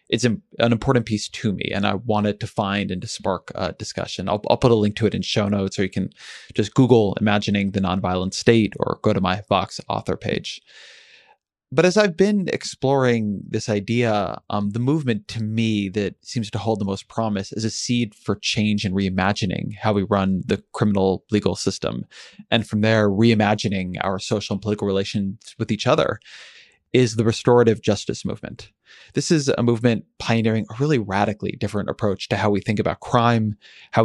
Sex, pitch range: male, 100-120 Hz